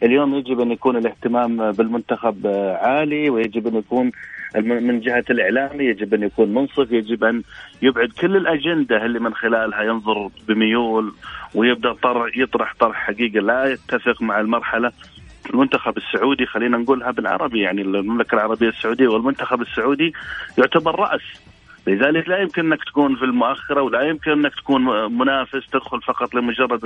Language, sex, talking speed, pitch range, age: Arabic, male, 140 wpm, 115-145 Hz, 30-49